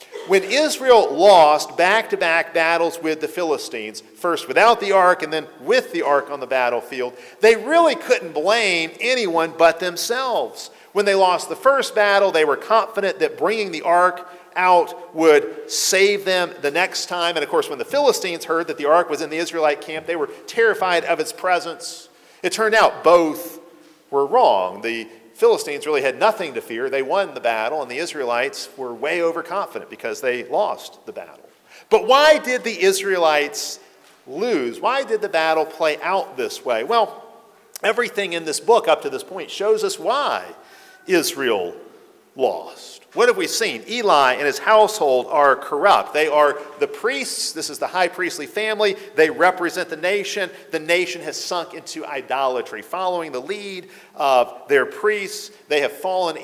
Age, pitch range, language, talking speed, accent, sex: 40-59, 165-270 Hz, English, 175 wpm, American, male